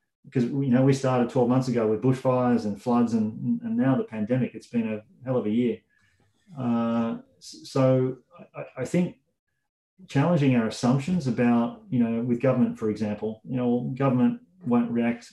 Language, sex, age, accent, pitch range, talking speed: English, male, 30-49, Australian, 115-130 Hz, 170 wpm